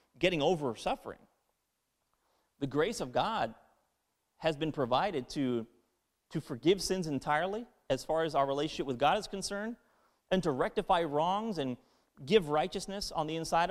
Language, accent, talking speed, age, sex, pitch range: English, American, 150 wpm, 30-49, male, 145-190 Hz